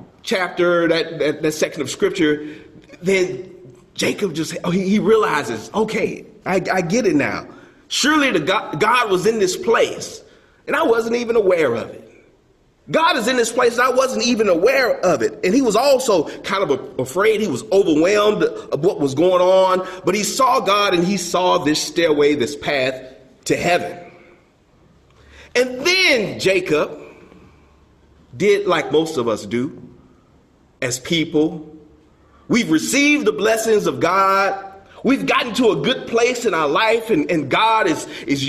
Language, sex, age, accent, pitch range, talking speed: English, male, 40-59, American, 170-250 Hz, 165 wpm